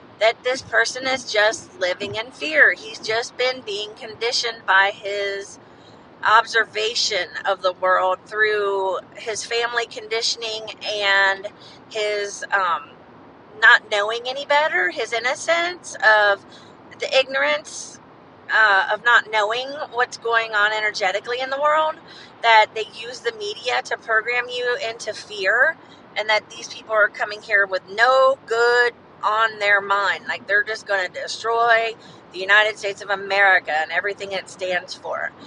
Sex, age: female, 40-59